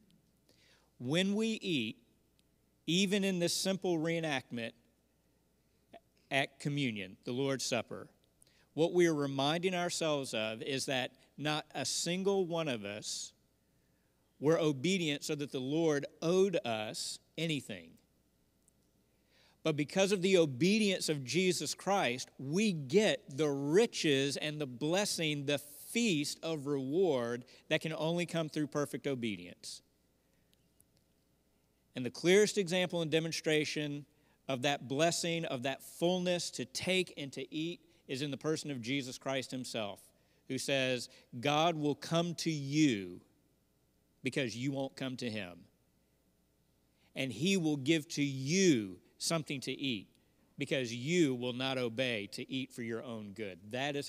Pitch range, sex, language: 120-165 Hz, male, English